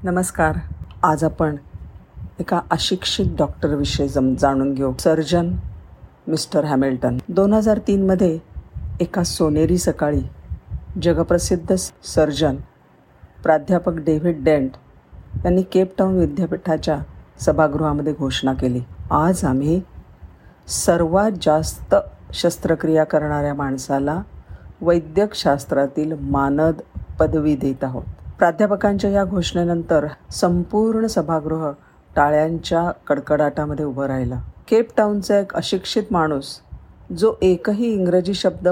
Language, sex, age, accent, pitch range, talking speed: Marathi, female, 50-69, native, 140-180 Hz, 90 wpm